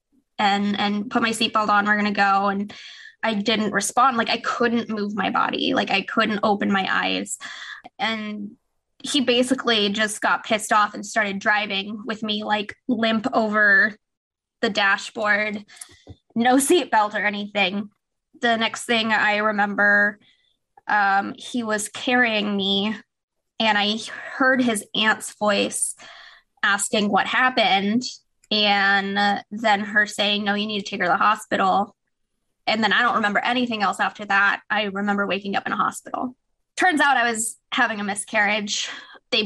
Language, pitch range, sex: English, 205-235 Hz, female